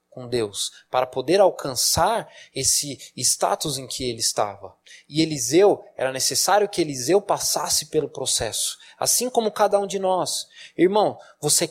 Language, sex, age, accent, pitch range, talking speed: Portuguese, male, 20-39, Brazilian, 120-170 Hz, 145 wpm